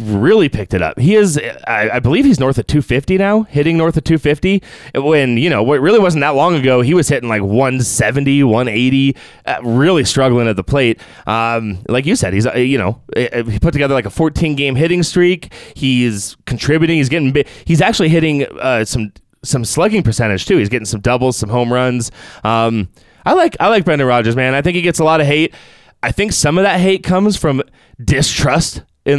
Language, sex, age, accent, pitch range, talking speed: English, male, 20-39, American, 120-165 Hz, 190 wpm